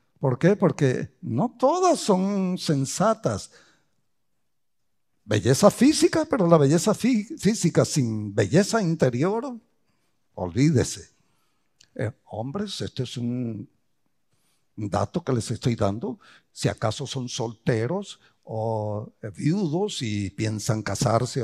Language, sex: English, male